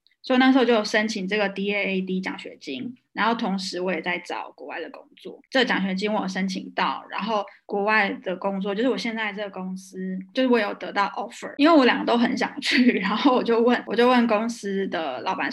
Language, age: Chinese, 20-39